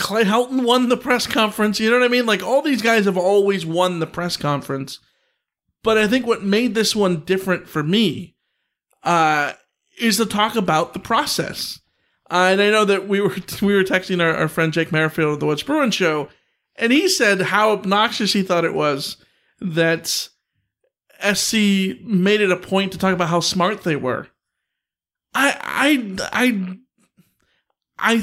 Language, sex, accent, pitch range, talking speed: English, male, American, 175-220 Hz, 180 wpm